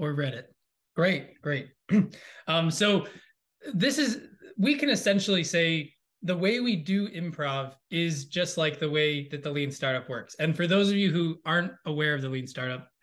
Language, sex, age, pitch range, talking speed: English, male, 20-39, 150-195 Hz, 180 wpm